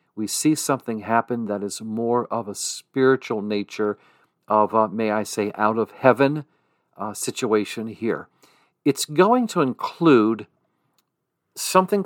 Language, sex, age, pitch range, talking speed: English, male, 50-69, 110-140 Hz, 135 wpm